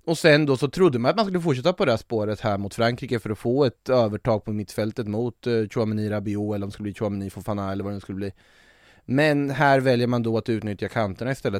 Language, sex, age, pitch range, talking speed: Swedish, male, 20-39, 105-125 Hz, 250 wpm